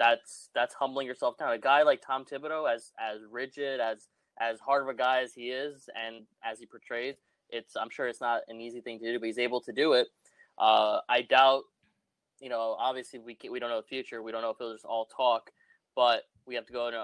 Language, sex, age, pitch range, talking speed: English, male, 20-39, 115-140 Hz, 245 wpm